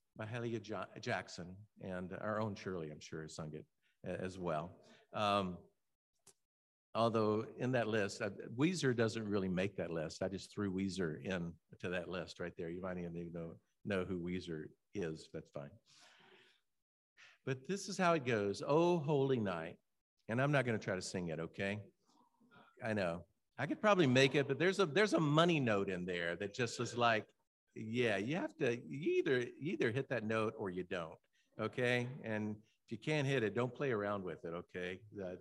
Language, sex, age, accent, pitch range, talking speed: English, male, 50-69, American, 95-150 Hz, 190 wpm